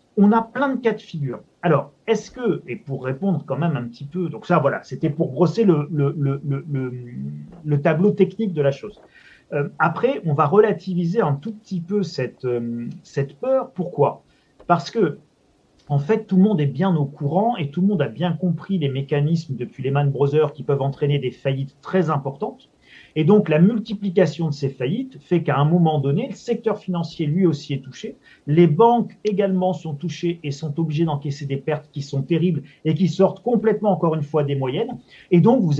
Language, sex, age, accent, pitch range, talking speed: French, male, 40-59, French, 140-190 Hz, 210 wpm